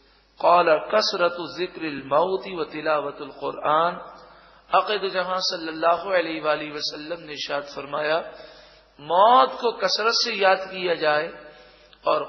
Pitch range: 150-180 Hz